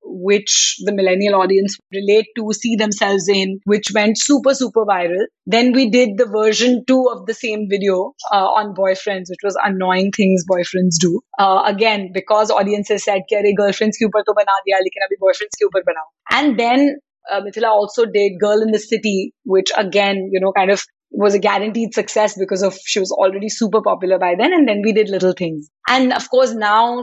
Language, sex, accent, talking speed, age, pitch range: English, female, Indian, 190 wpm, 30-49, 195-235 Hz